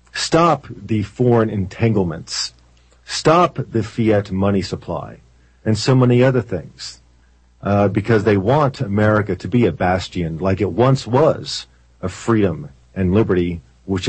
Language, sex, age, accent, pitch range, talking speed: English, male, 40-59, American, 95-120 Hz, 135 wpm